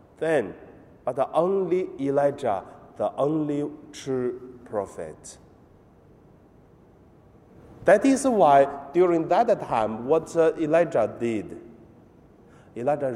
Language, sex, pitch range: Chinese, male, 115-145 Hz